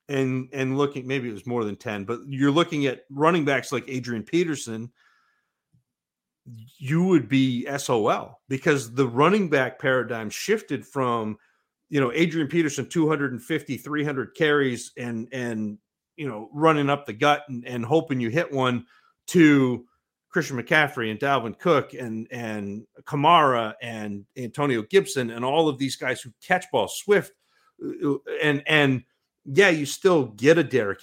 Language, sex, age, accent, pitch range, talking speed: English, male, 40-59, American, 120-150 Hz, 155 wpm